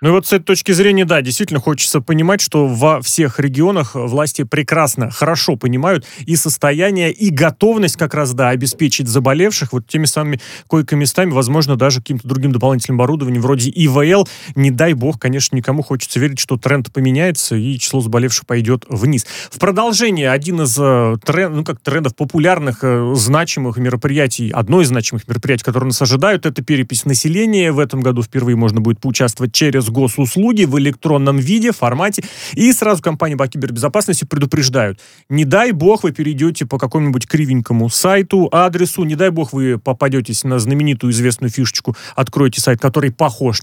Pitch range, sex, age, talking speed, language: 130-170 Hz, male, 30-49, 160 wpm, Russian